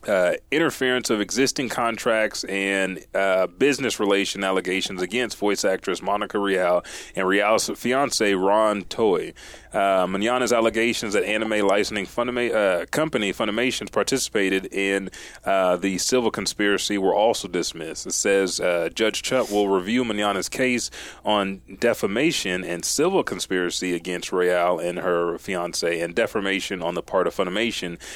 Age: 30-49